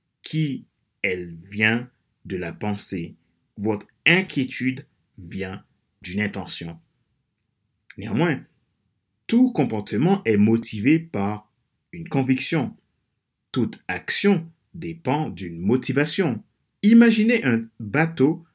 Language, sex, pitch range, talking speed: French, male, 105-165 Hz, 85 wpm